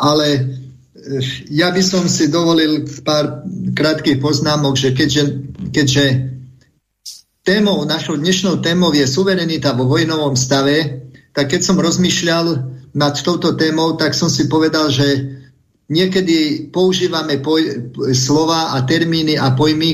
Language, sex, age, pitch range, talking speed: Slovak, male, 50-69, 135-165 Hz, 120 wpm